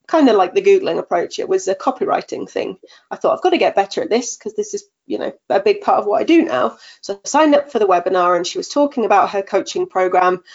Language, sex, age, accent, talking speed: English, female, 30-49, British, 275 wpm